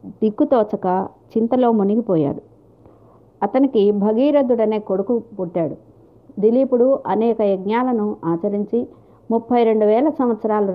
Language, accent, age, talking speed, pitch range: Telugu, native, 50-69, 85 wpm, 200-250 Hz